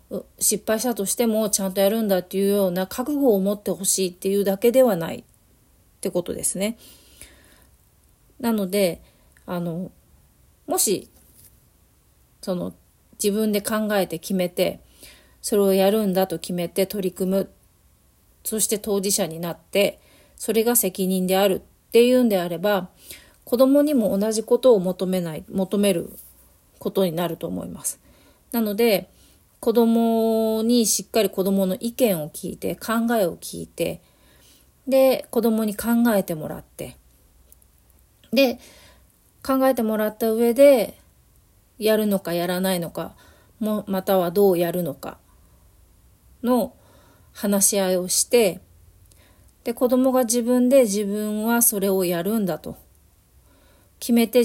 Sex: female